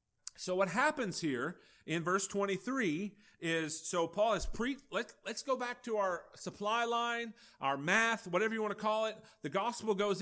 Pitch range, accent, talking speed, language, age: 140-210 Hz, American, 175 wpm, English, 40-59